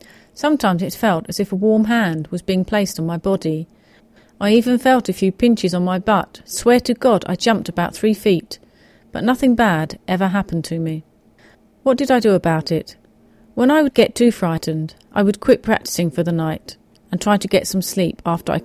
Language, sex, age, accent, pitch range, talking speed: English, female, 40-59, British, 170-215 Hz, 210 wpm